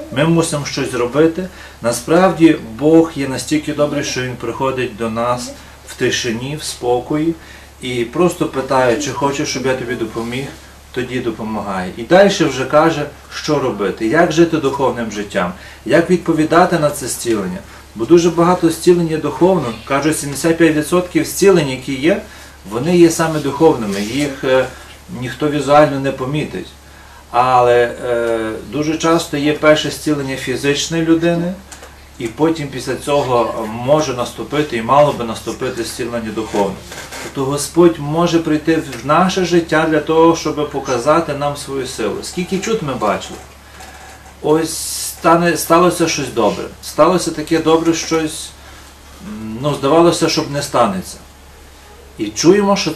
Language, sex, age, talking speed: Ukrainian, male, 40-59, 135 wpm